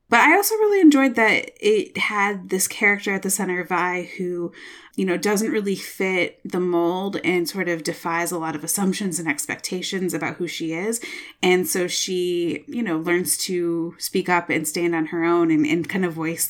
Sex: female